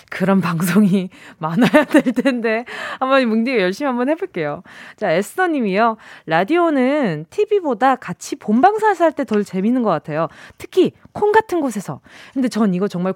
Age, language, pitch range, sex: 20-39, Korean, 195-295 Hz, female